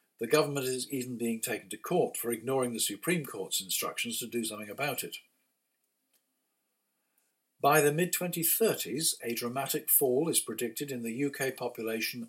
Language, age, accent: English, 50-69, British